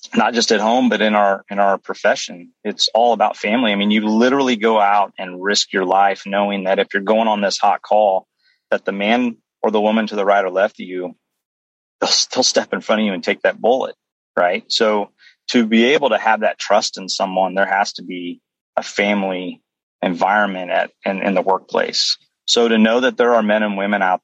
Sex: male